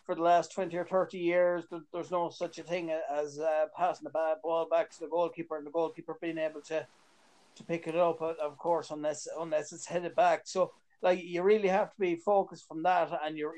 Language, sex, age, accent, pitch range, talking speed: English, male, 30-49, Irish, 155-175 Hz, 225 wpm